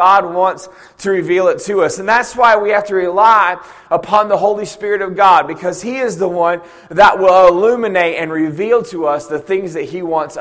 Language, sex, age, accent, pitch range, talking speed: English, male, 30-49, American, 160-210 Hz, 215 wpm